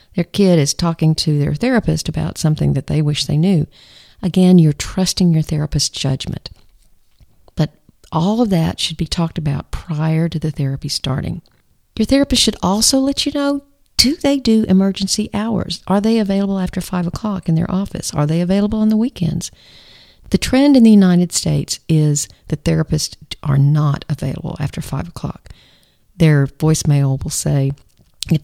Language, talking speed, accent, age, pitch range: English, 170 wpm, American, 50-69, 145-195 Hz